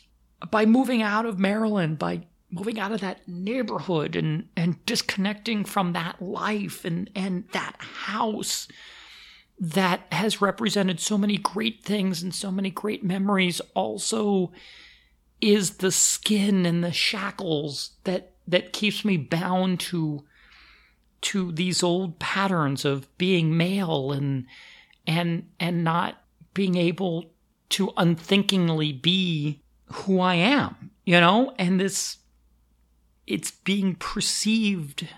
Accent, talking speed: American, 125 wpm